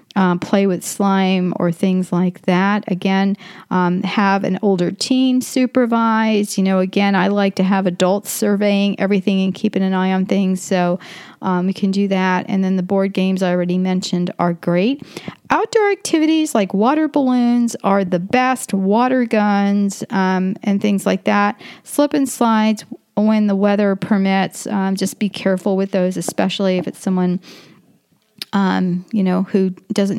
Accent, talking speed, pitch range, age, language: American, 165 wpm, 185-215 Hz, 40-59, English